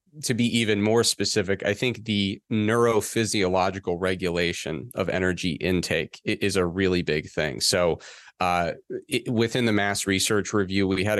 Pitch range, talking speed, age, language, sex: 90-110 Hz, 145 wpm, 30-49, English, male